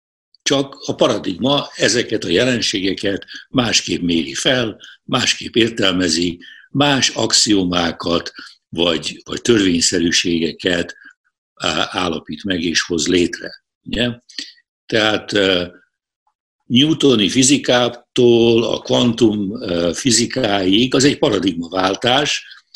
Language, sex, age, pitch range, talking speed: Hungarian, male, 60-79, 100-150 Hz, 85 wpm